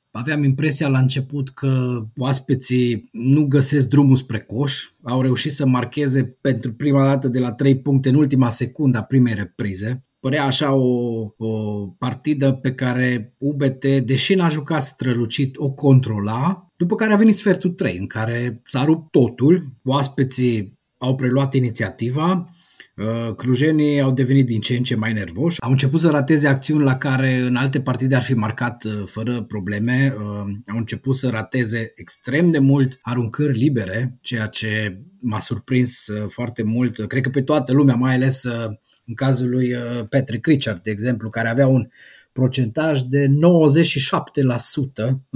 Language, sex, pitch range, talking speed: Romanian, male, 120-145 Hz, 155 wpm